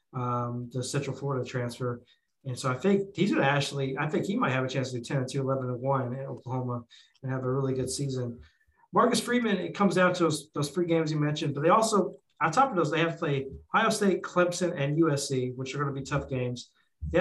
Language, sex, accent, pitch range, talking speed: English, male, American, 130-165 Hz, 250 wpm